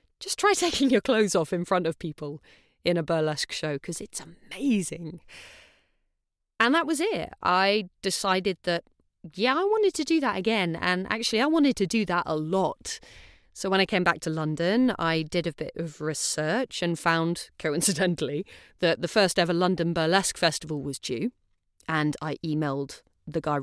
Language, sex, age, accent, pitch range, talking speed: English, female, 30-49, British, 165-270 Hz, 180 wpm